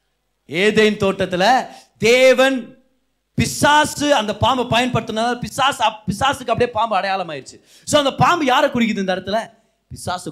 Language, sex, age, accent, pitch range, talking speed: Tamil, male, 30-49, native, 185-270 Hz, 110 wpm